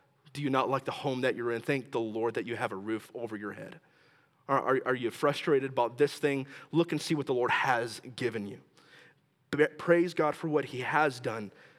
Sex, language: male, English